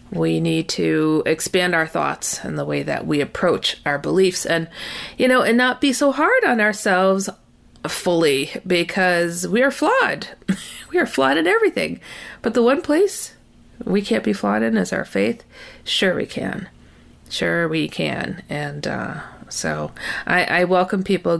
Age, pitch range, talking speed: 40-59, 165-215 Hz, 165 wpm